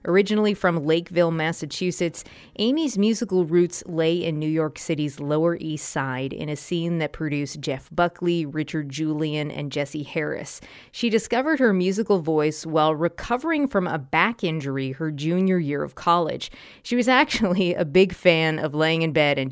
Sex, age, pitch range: female, 20-39, 155-195 Hz